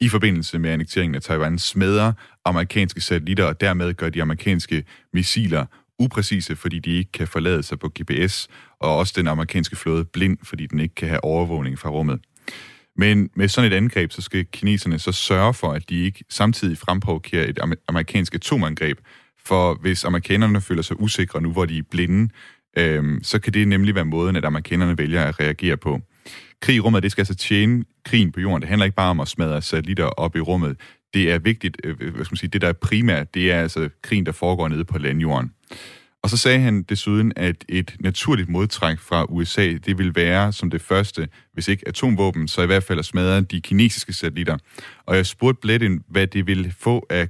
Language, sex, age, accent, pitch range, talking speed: Danish, male, 30-49, native, 80-100 Hz, 205 wpm